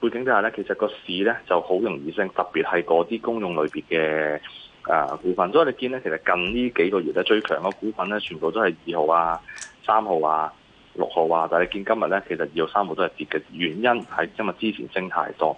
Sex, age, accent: male, 20-39, native